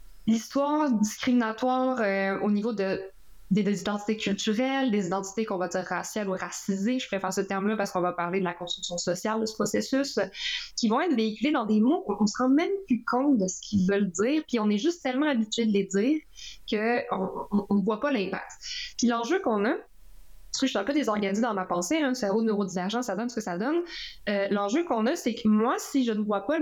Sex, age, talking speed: female, 20-39, 245 wpm